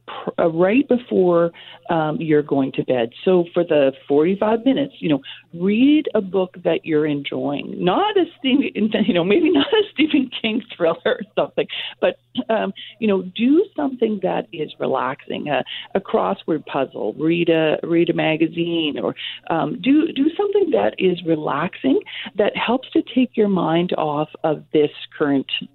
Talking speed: 170 wpm